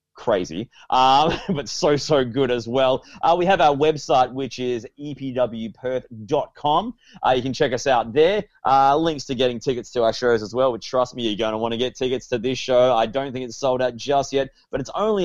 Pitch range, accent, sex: 110-140 Hz, Australian, male